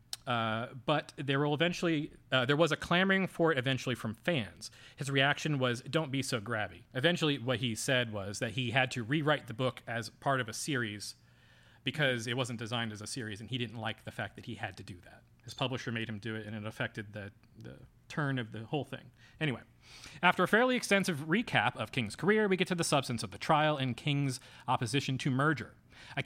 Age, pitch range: 30-49, 115-150 Hz